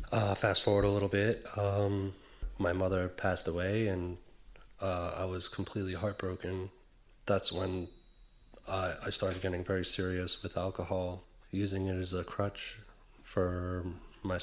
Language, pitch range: English, 90-100 Hz